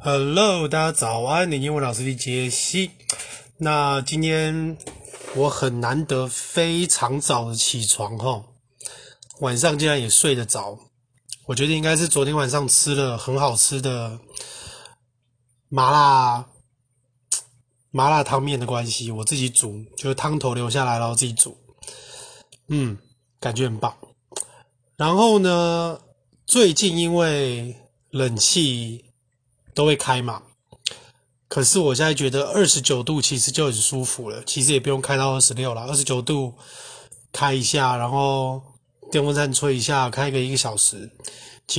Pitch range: 125-150 Hz